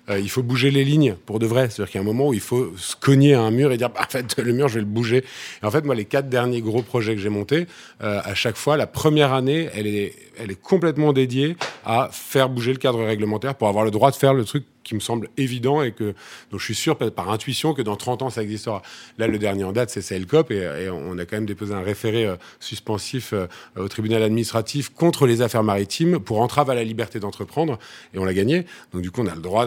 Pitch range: 105-135 Hz